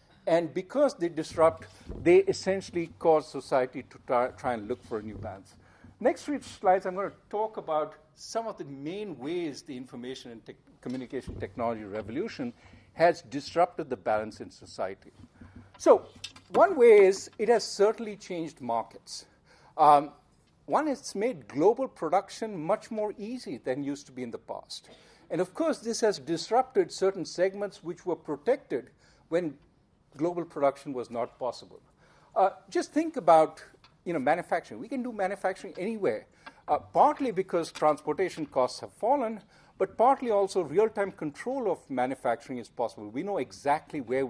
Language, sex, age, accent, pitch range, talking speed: English, male, 50-69, Indian, 130-205 Hz, 155 wpm